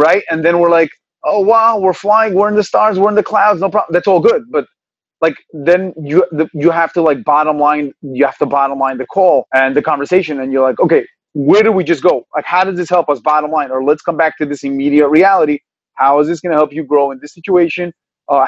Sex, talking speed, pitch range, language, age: male, 255 wpm, 145-170 Hz, English, 30-49